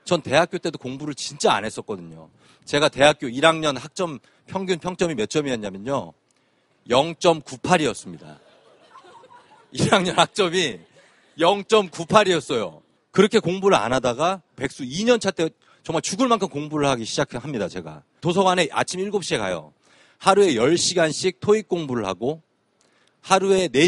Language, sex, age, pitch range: Korean, male, 40-59, 130-185 Hz